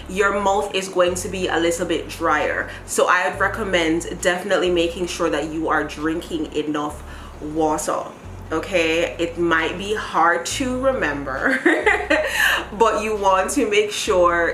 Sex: female